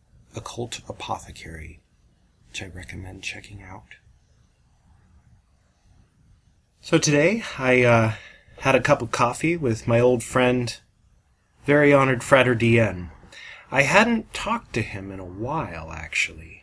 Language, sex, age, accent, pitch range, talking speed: English, male, 30-49, American, 90-115 Hz, 115 wpm